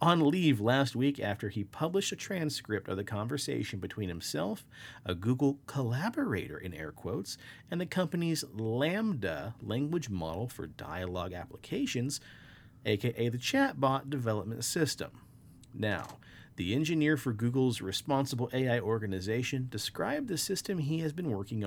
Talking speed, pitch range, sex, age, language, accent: 135 wpm, 110-145 Hz, male, 40-59, English, American